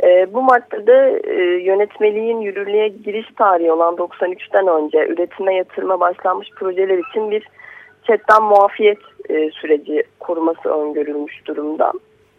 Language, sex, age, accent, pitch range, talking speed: Turkish, female, 30-49, native, 175-235 Hz, 100 wpm